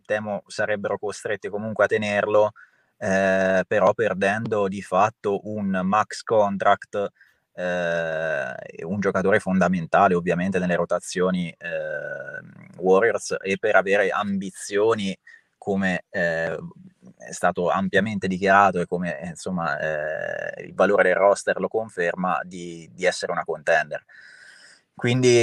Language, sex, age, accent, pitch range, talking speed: Italian, male, 20-39, native, 95-105 Hz, 115 wpm